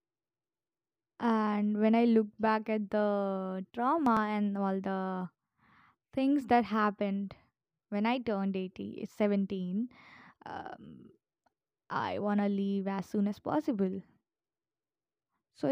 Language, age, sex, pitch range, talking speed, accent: English, 20-39, female, 200-260 Hz, 110 wpm, Indian